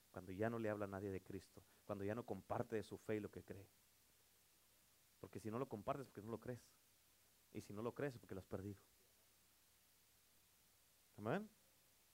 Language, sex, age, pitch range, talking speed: Spanish, male, 40-59, 100-135 Hz, 205 wpm